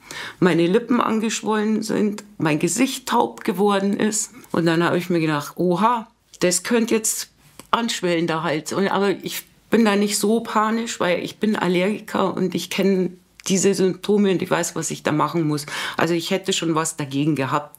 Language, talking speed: German, 180 wpm